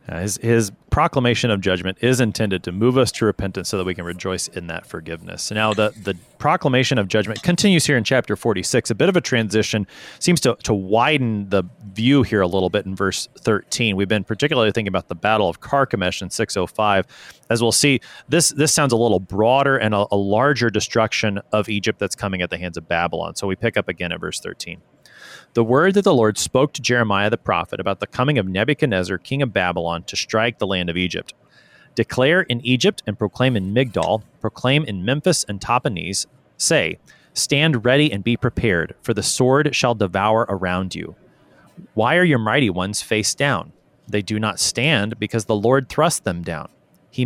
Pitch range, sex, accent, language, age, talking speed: 100-130 Hz, male, American, English, 30-49, 200 wpm